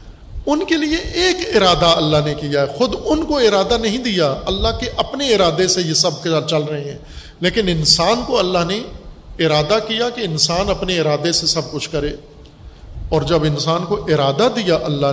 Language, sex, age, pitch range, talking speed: Urdu, male, 50-69, 160-210 Hz, 185 wpm